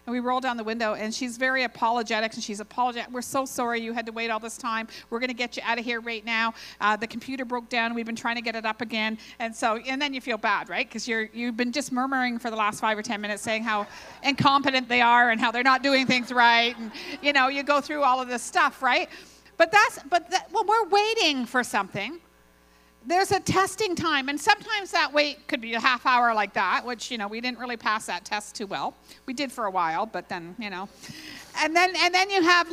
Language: English